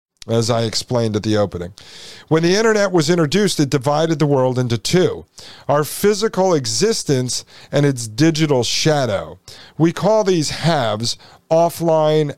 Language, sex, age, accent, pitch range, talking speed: English, male, 50-69, American, 125-160 Hz, 140 wpm